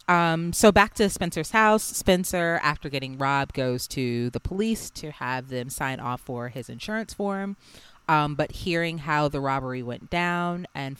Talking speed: 175 wpm